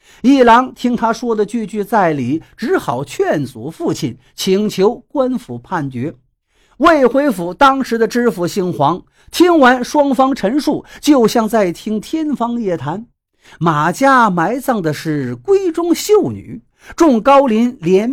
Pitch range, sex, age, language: 170-270 Hz, male, 50-69, Chinese